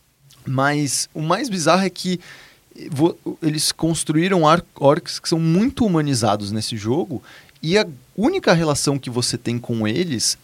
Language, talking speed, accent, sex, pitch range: Portuguese, 140 wpm, Brazilian, male, 130-185 Hz